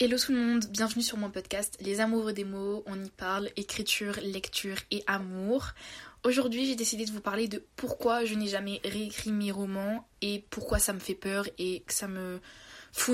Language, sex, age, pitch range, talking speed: French, female, 20-39, 190-220 Hz, 200 wpm